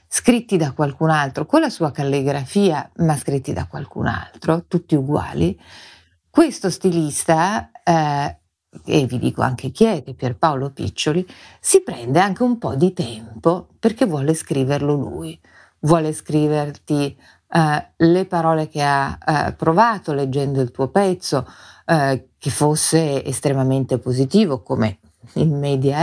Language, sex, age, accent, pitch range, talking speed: Italian, female, 50-69, native, 135-180 Hz, 135 wpm